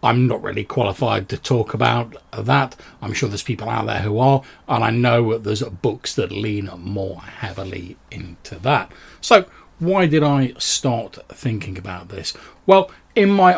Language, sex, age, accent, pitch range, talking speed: English, male, 40-59, British, 105-135 Hz, 170 wpm